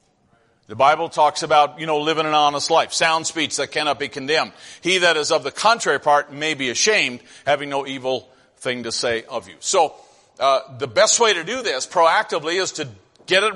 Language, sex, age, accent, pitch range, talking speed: English, male, 50-69, American, 150-185 Hz, 210 wpm